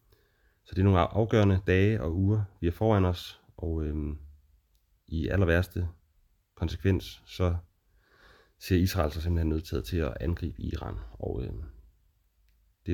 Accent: Danish